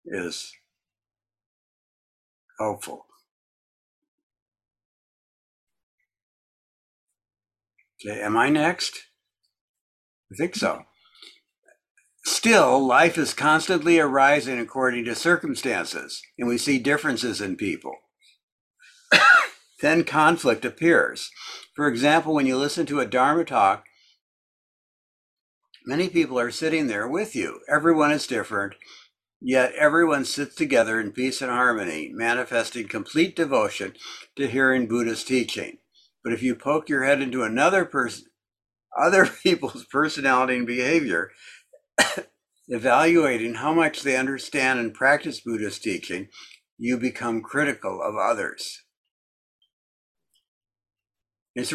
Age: 60-79